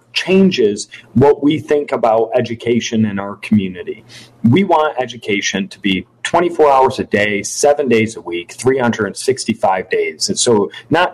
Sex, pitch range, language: male, 115-145 Hz, English